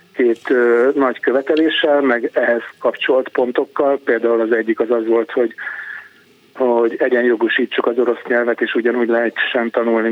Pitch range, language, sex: 120-135 Hz, Hungarian, male